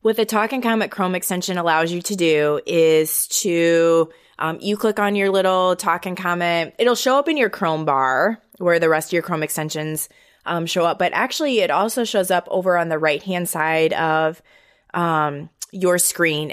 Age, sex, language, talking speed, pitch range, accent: 20-39, female, English, 195 wpm, 155-185 Hz, American